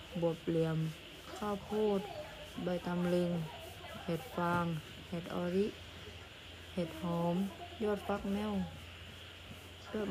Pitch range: 165-195 Hz